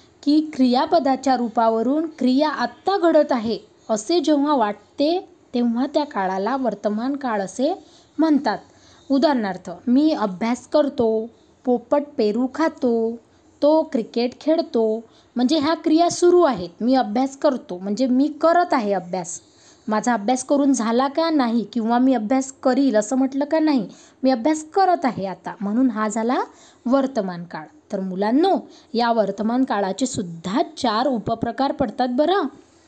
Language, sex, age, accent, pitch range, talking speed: Marathi, female, 20-39, native, 225-310 Hz, 135 wpm